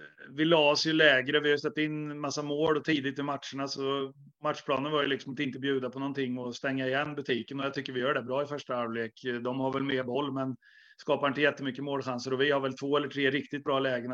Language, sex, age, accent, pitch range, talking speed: Swedish, male, 30-49, native, 130-145 Hz, 250 wpm